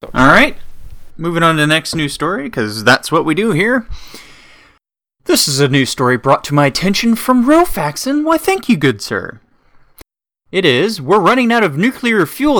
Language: English